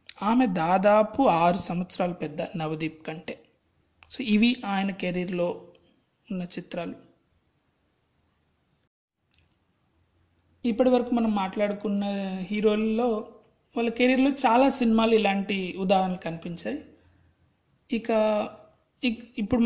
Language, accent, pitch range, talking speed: Telugu, native, 175-220 Hz, 80 wpm